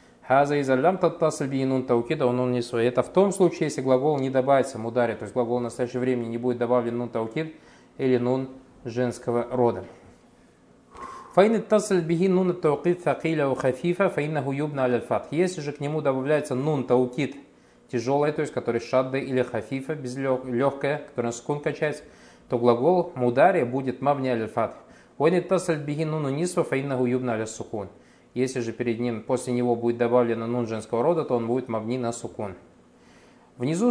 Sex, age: male, 20-39